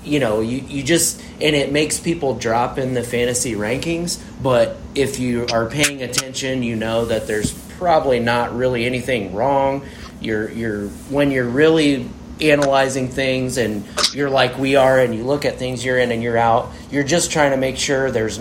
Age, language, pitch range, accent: 30-49, English, 115-135 Hz, American